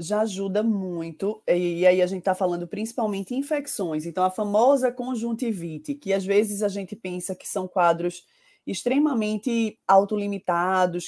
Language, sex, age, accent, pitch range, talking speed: Portuguese, female, 20-39, Brazilian, 175-210 Hz, 140 wpm